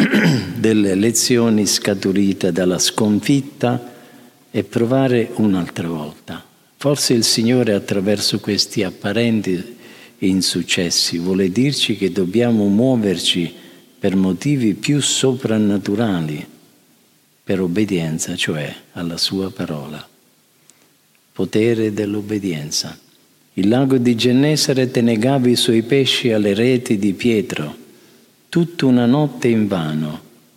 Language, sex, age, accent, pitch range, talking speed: Italian, male, 50-69, native, 95-125 Hz, 95 wpm